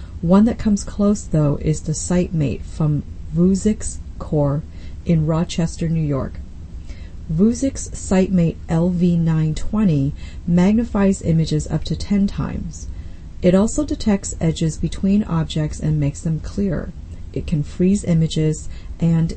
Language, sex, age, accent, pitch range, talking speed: English, female, 40-59, American, 145-180 Hz, 120 wpm